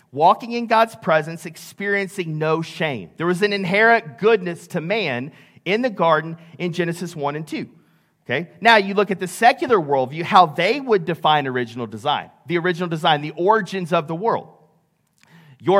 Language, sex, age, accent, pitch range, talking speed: English, male, 40-59, American, 160-200 Hz, 170 wpm